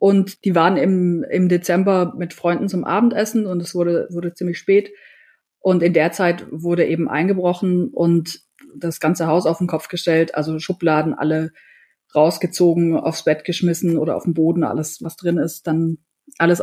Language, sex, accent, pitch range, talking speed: German, female, German, 170-190 Hz, 175 wpm